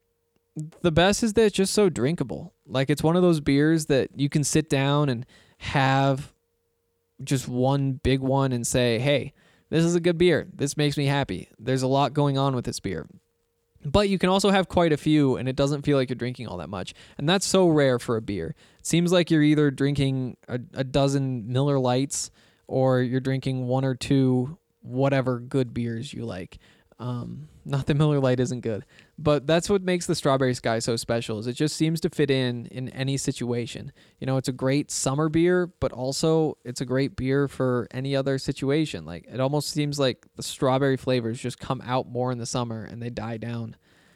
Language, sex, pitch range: English, male, 125-150 Hz